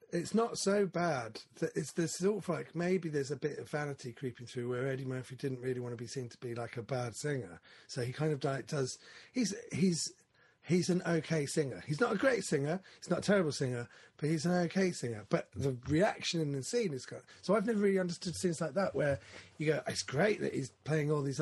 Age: 30-49